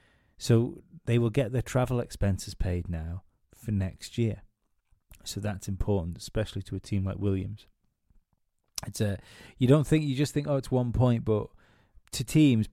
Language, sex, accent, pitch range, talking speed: English, male, British, 100-125 Hz, 170 wpm